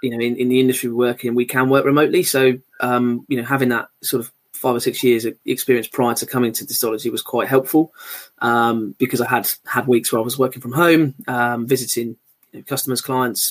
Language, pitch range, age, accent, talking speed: English, 120-135 Hz, 20-39, British, 230 wpm